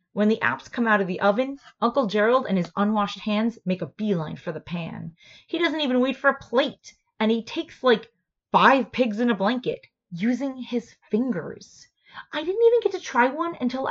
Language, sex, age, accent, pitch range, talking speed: English, female, 20-39, American, 180-245 Hz, 205 wpm